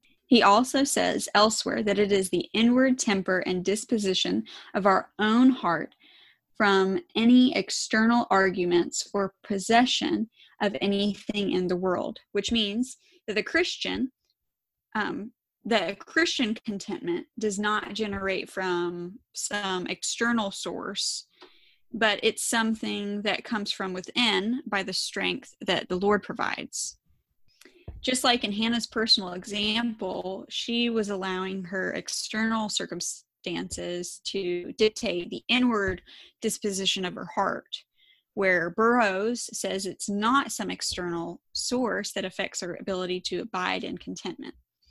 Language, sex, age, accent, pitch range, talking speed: English, female, 10-29, American, 190-230 Hz, 125 wpm